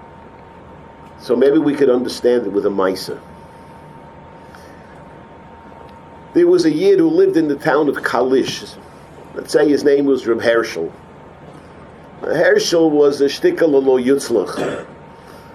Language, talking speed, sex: English, 125 wpm, male